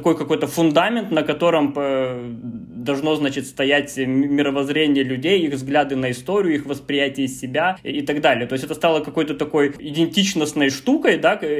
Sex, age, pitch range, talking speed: male, 20-39, 135-170 Hz, 150 wpm